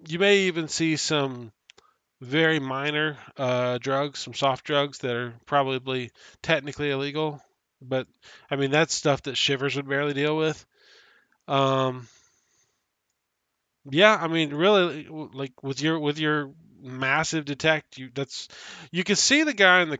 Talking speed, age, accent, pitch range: 145 wpm, 20-39, American, 130-160 Hz